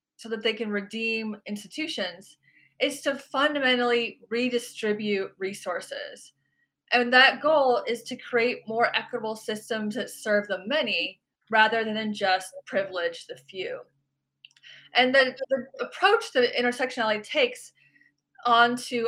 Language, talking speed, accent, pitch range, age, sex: English, 120 wpm, American, 195-260 Hz, 20-39, female